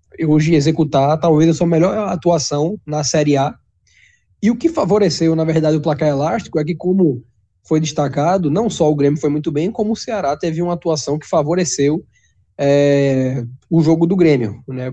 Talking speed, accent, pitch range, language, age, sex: 180 wpm, Brazilian, 130-160 Hz, Portuguese, 20-39, male